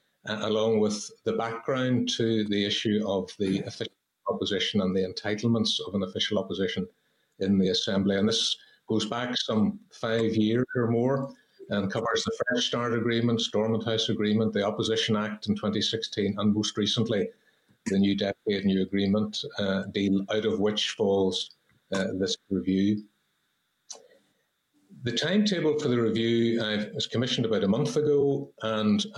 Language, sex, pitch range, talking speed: English, male, 105-120 Hz, 150 wpm